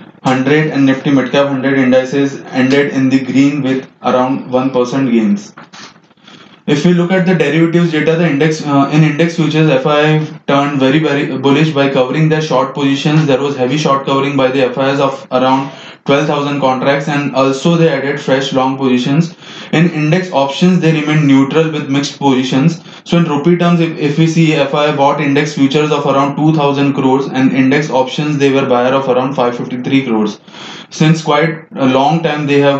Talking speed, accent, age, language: 180 wpm, Indian, 20-39, English